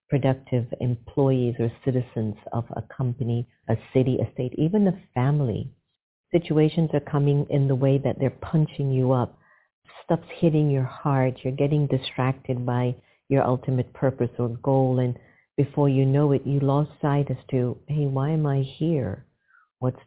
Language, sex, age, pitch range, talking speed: English, female, 50-69, 125-145 Hz, 160 wpm